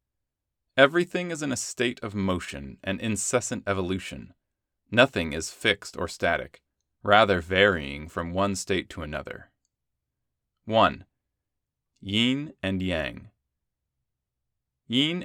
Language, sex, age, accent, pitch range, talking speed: English, male, 20-39, American, 90-120 Hz, 105 wpm